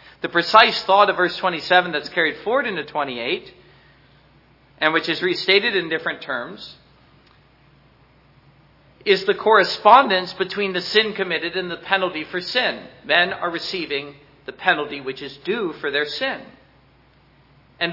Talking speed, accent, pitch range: 140 wpm, American, 155-200 Hz